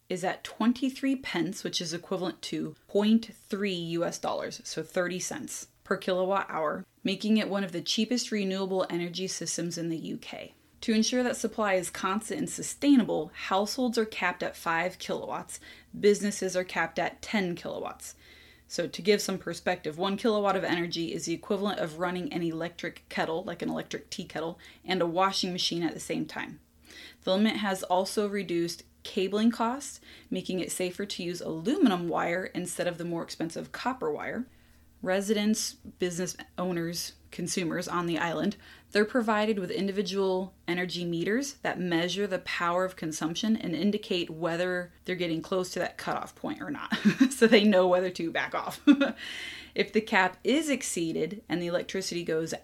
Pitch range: 175-215 Hz